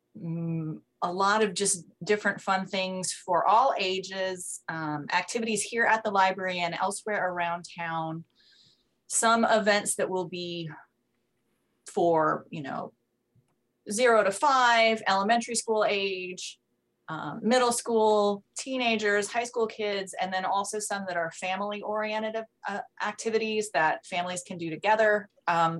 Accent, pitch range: American, 170-210 Hz